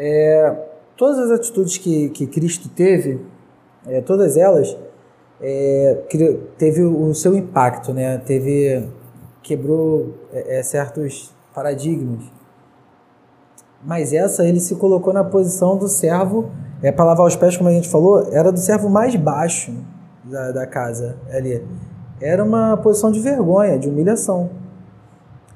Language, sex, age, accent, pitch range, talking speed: Portuguese, male, 20-39, Brazilian, 150-200 Hz, 115 wpm